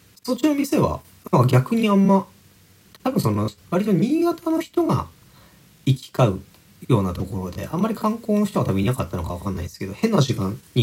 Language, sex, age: Japanese, male, 40-59